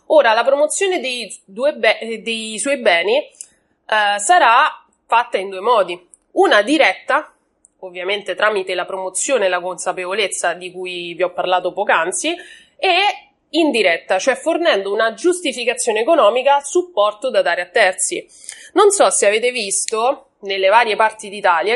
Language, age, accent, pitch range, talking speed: Italian, 30-49, native, 200-305 Hz, 140 wpm